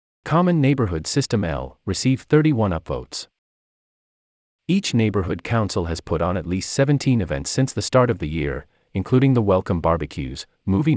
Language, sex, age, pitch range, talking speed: English, male, 30-49, 75-120 Hz, 155 wpm